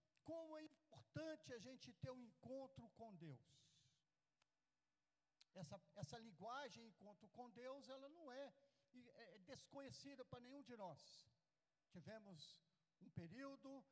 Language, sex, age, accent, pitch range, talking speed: Portuguese, male, 60-79, Brazilian, 185-275 Hz, 120 wpm